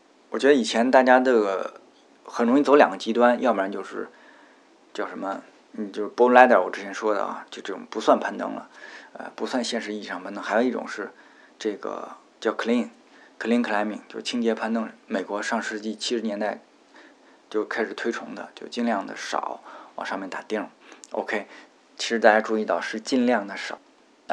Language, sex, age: Chinese, male, 20-39